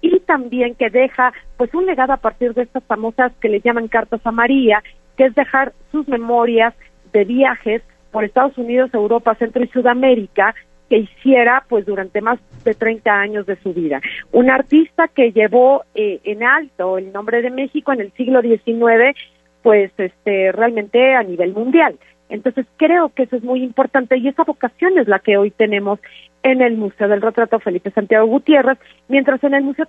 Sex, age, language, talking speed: female, 40-59, Spanish, 185 wpm